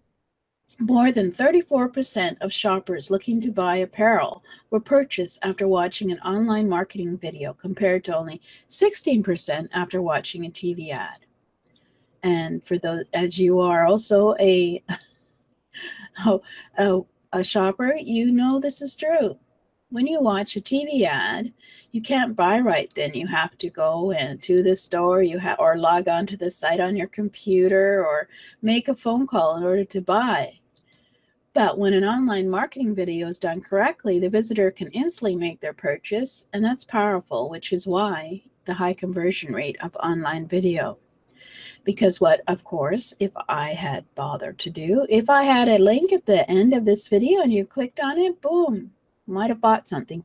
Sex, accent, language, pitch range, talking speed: female, American, English, 180-240 Hz, 170 wpm